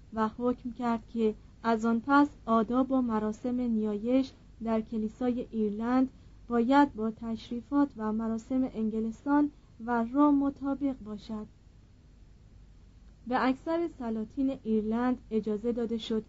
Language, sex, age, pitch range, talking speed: Persian, female, 30-49, 215-265 Hz, 115 wpm